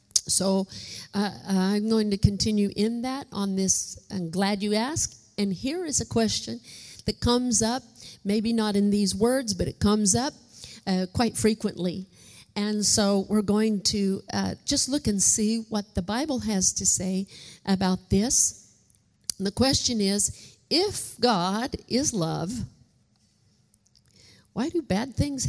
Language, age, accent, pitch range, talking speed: English, 50-69, American, 185-225 Hz, 150 wpm